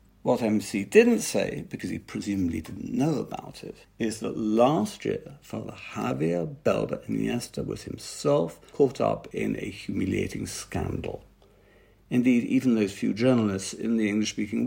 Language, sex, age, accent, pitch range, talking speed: English, male, 60-79, British, 100-130 Hz, 145 wpm